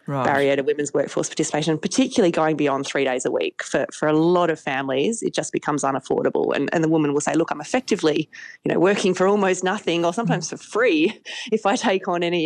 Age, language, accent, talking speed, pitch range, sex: 30-49, English, Australian, 220 wpm, 155-195 Hz, female